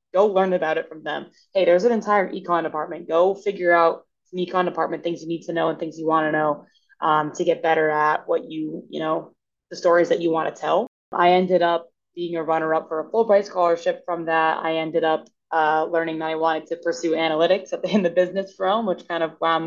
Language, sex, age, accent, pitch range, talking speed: English, female, 20-39, American, 160-180 Hz, 230 wpm